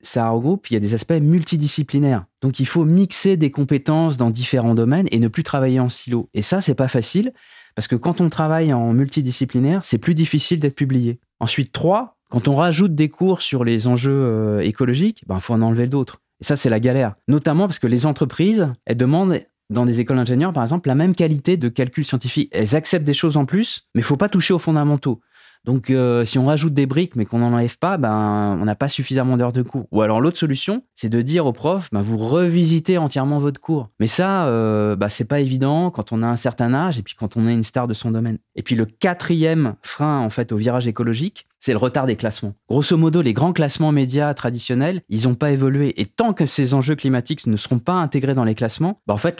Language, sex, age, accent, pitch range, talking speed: French, male, 20-39, French, 115-155 Hz, 235 wpm